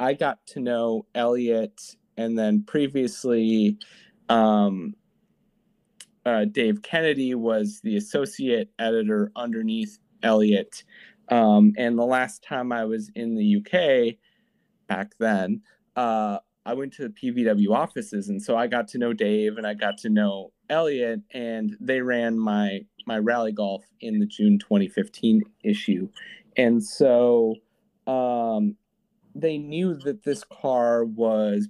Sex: male